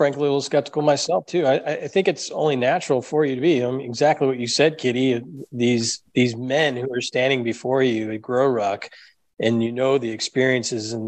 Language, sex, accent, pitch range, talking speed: English, male, American, 115-135 Hz, 215 wpm